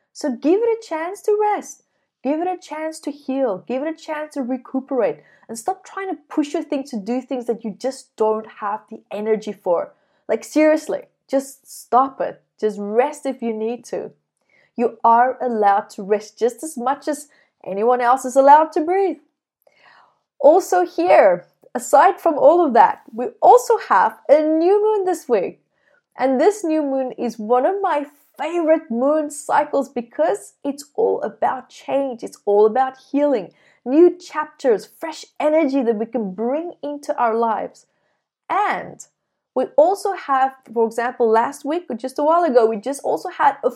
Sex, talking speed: female, 175 wpm